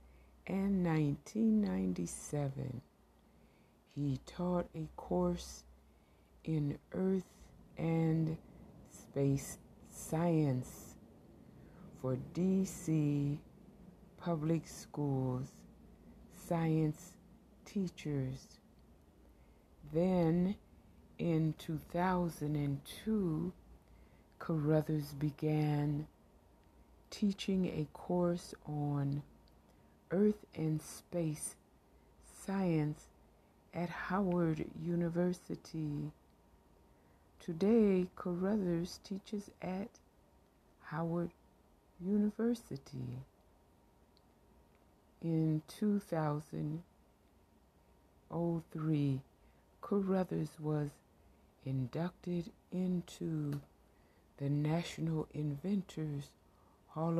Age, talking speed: 60-79, 50 wpm